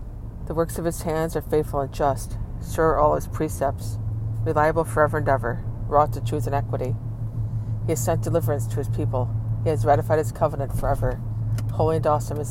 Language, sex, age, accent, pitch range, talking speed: English, female, 50-69, American, 110-150 Hz, 190 wpm